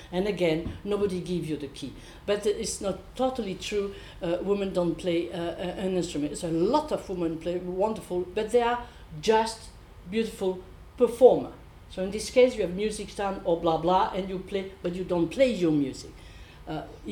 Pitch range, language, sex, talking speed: 175-235 Hz, English, female, 185 wpm